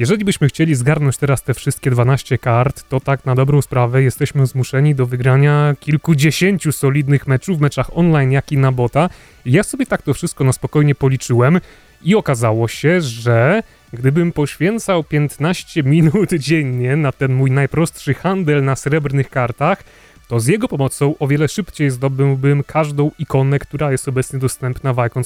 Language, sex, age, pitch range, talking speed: Polish, male, 30-49, 130-165 Hz, 165 wpm